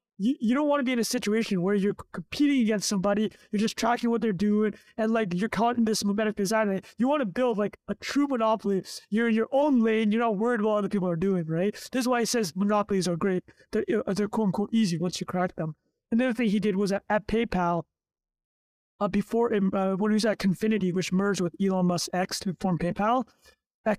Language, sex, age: English, male, 20-39